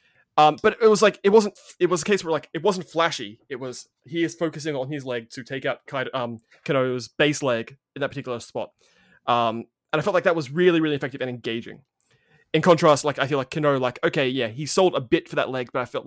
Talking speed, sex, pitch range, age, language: 255 wpm, male, 125-165 Hz, 20-39, English